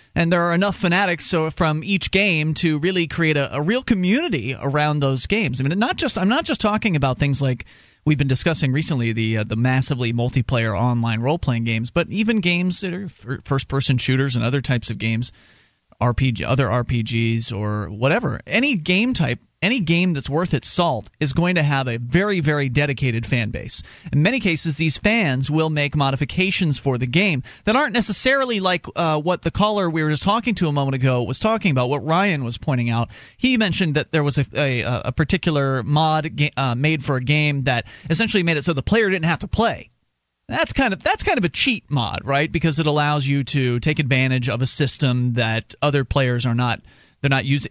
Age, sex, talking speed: 30-49, male, 210 wpm